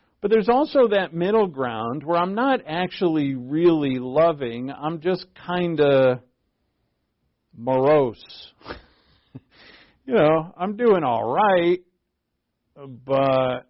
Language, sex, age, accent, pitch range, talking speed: English, male, 50-69, American, 115-155 Hz, 105 wpm